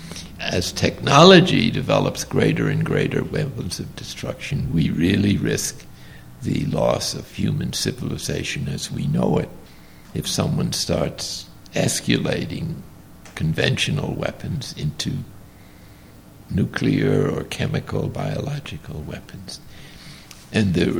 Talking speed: 100 wpm